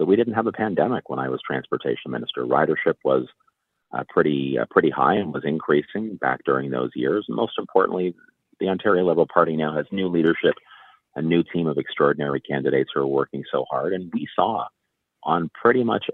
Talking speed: 195 wpm